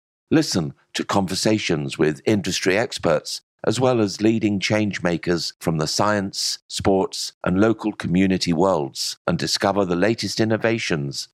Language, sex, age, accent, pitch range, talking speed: English, male, 50-69, British, 85-115 Hz, 125 wpm